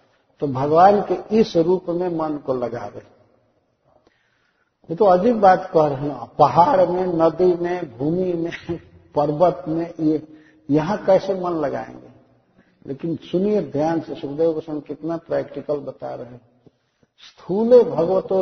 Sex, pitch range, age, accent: male, 140-185 Hz, 50-69, native